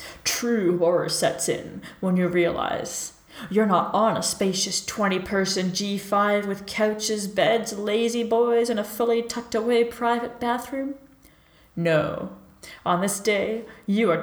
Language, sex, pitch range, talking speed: English, female, 175-220 Hz, 135 wpm